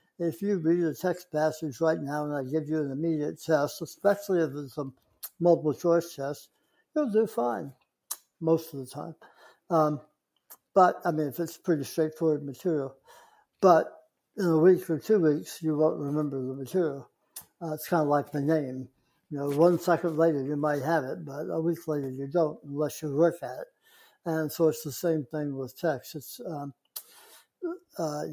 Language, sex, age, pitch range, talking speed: English, male, 60-79, 145-165 Hz, 185 wpm